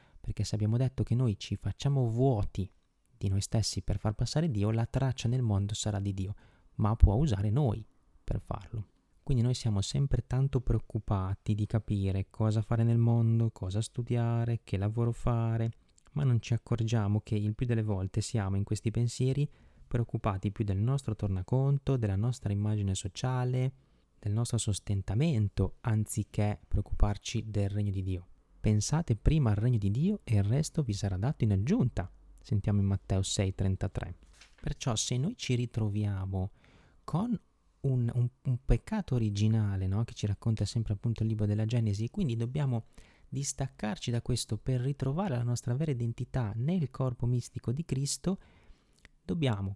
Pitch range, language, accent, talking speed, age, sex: 100-125 Hz, Italian, native, 160 wpm, 20-39, male